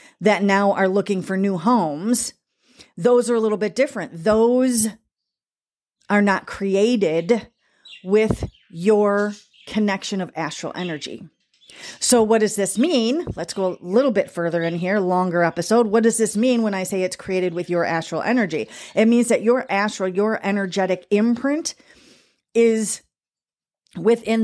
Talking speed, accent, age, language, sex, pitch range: 150 wpm, American, 40-59, English, female, 185-225 Hz